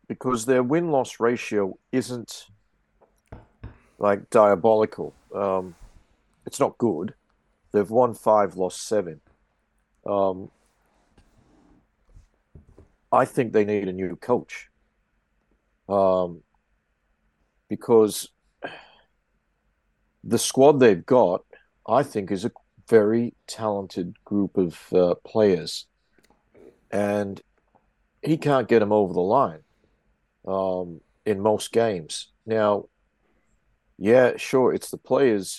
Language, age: English, 50-69